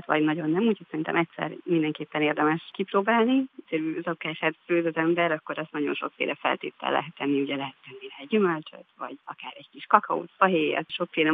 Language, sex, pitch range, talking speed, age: Hungarian, female, 150-195 Hz, 170 wpm, 30-49